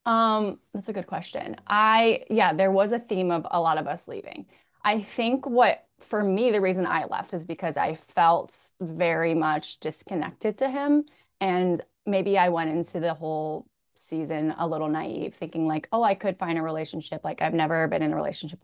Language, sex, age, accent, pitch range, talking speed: English, female, 20-39, American, 165-195 Hz, 195 wpm